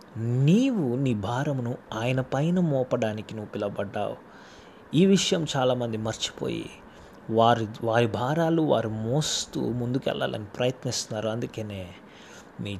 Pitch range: 105-135 Hz